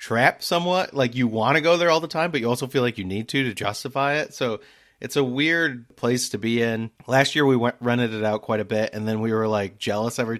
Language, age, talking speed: English, 30-49, 270 wpm